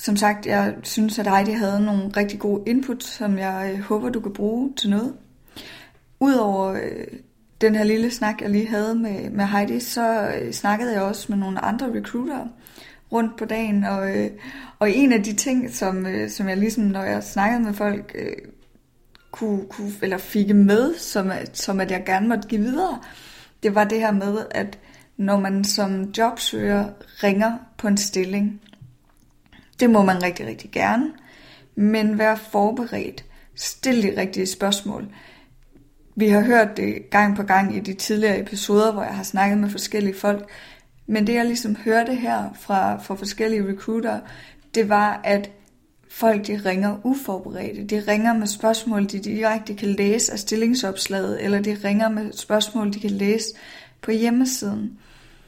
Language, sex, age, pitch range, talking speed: Danish, female, 20-39, 200-225 Hz, 170 wpm